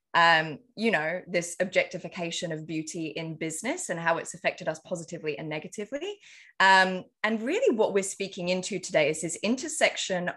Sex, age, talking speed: female, 20-39, 160 wpm